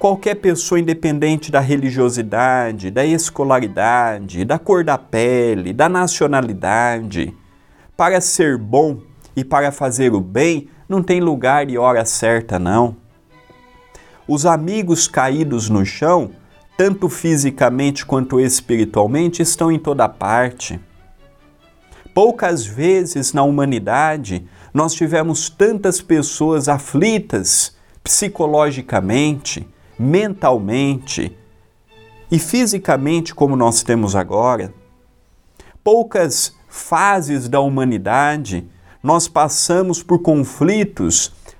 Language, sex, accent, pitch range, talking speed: Portuguese, male, Brazilian, 115-170 Hz, 95 wpm